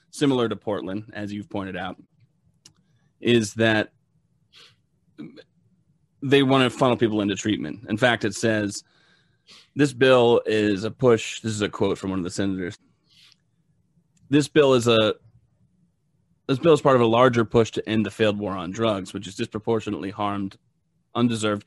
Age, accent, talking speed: 30-49, American, 160 wpm